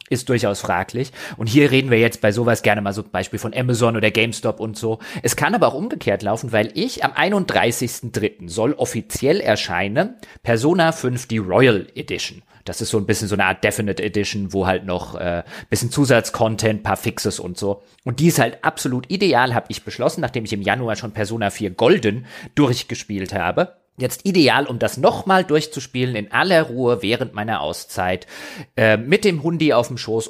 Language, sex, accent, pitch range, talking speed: German, male, German, 105-150 Hz, 195 wpm